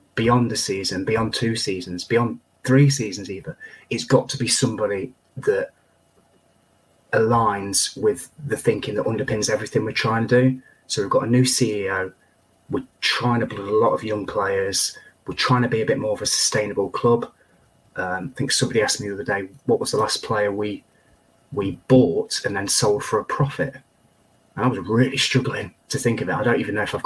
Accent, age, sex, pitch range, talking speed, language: British, 30-49, male, 110-135 Hz, 200 wpm, English